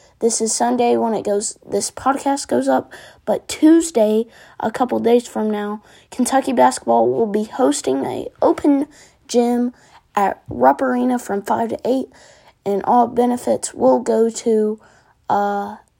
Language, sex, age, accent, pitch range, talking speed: English, female, 20-39, American, 205-235 Hz, 145 wpm